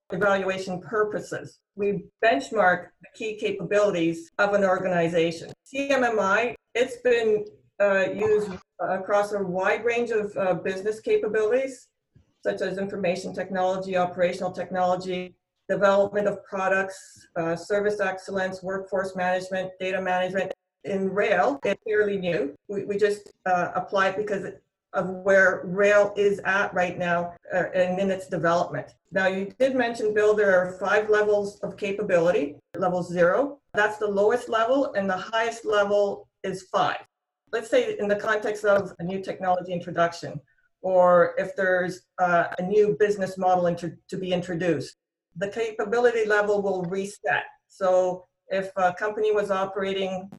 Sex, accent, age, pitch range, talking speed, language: female, American, 50-69, 180-210 Hz, 140 wpm, English